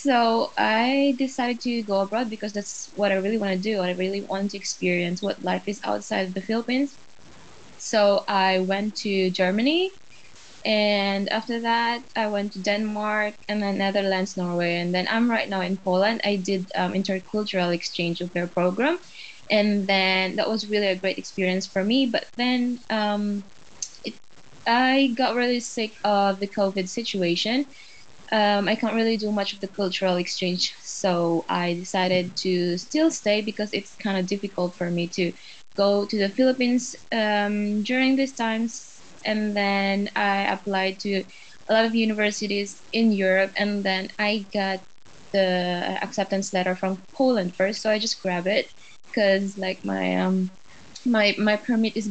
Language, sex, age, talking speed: English, female, 20-39, 170 wpm